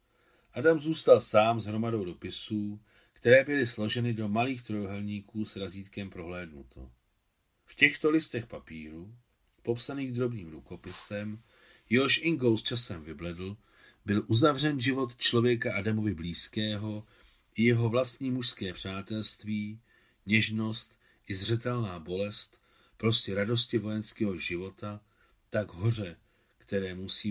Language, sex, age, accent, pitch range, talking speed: Czech, male, 40-59, native, 95-115 Hz, 110 wpm